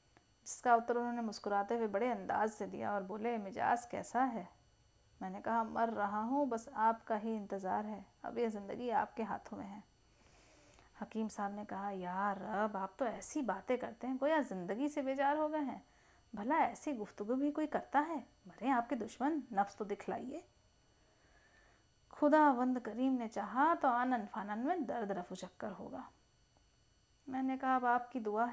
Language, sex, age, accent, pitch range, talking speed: Hindi, female, 30-49, native, 205-260 Hz, 175 wpm